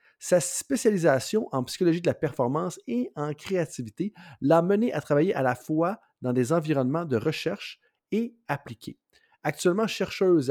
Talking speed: 150 wpm